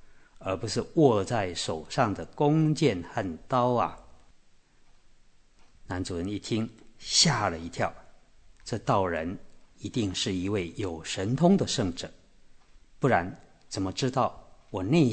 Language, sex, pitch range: Chinese, male, 95-135 Hz